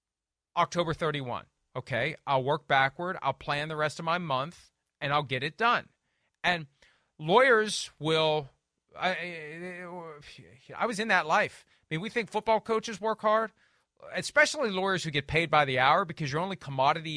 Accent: American